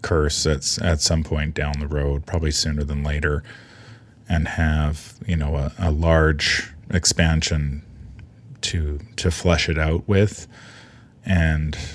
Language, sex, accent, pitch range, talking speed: English, male, American, 80-100 Hz, 135 wpm